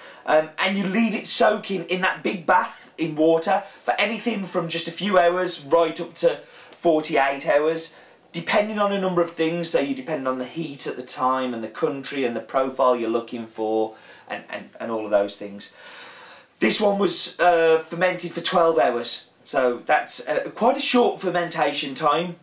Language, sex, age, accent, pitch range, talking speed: English, male, 30-49, British, 130-185 Hz, 190 wpm